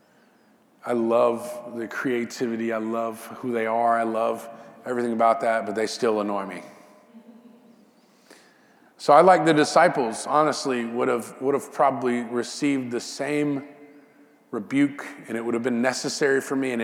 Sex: male